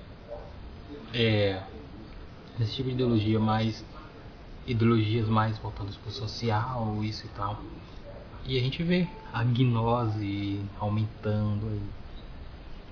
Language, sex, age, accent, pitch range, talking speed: Portuguese, male, 20-39, Brazilian, 105-130 Hz, 105 wpm